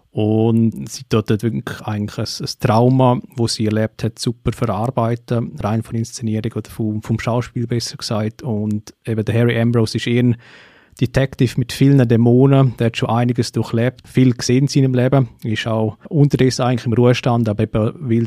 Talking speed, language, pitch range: 180 wpm, German, 115-130 Hz